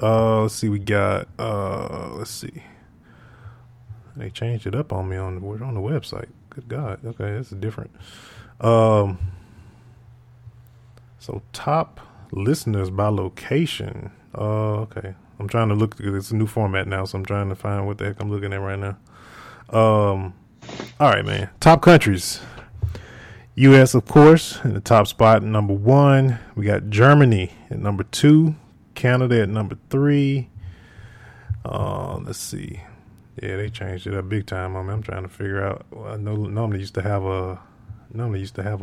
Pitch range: 100-120 Hz